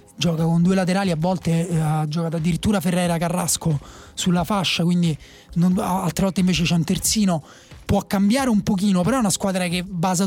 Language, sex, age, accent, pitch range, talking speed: Italian, male, 30-49, native, 170-200 Hz, 185 wpm